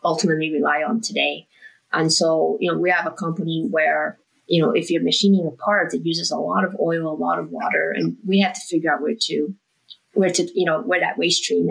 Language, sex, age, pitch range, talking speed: English, female, 20-39, 160-190 Hz, 235 wpm